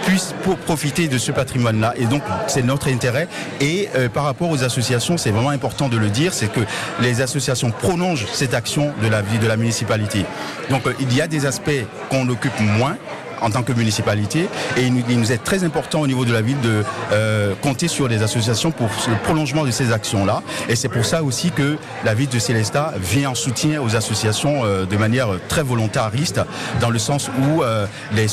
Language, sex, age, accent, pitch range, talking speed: French, male, 50-69, French, 110-140 Hz, 210 wpm